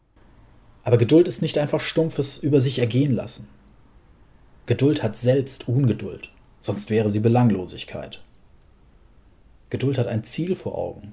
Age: 30-49